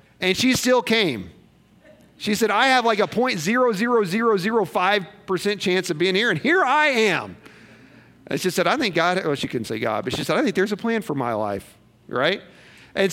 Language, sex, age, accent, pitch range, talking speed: English, male, 40-59, American, 170-210 Hz, 195 wpm